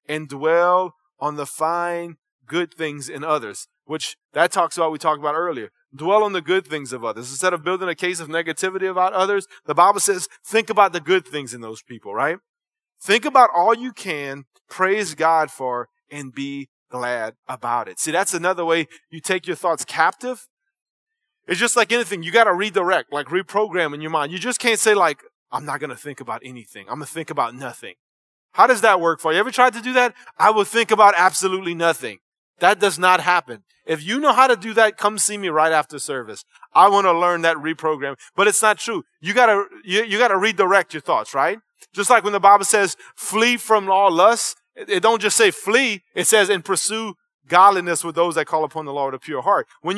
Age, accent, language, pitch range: 30-49, American, English, 150-210 Hz